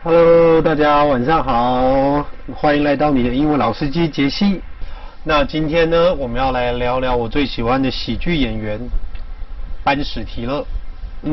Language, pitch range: Chinese, 120-155 Hz